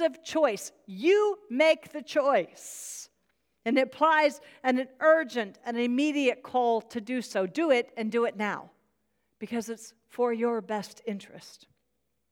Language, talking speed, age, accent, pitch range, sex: English, 135 wpm, 50-69, American, 225-285 Hz, female